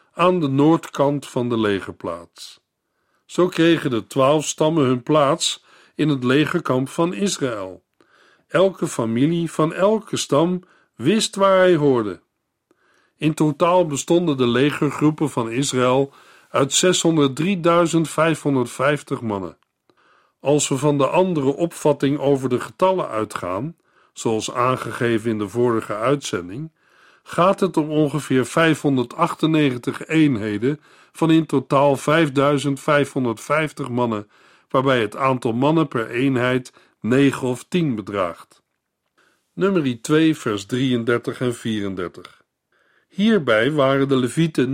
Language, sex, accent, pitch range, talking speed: Dutch, male, Dutch, 125-160 Hz, 115 wpm